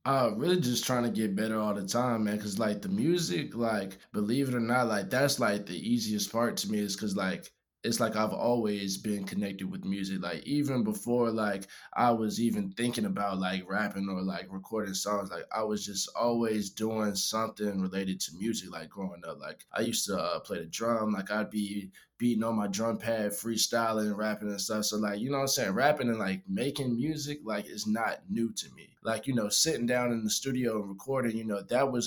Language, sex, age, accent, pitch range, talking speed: English, male, 20-39, American, 105-125 Hz, 220 wpm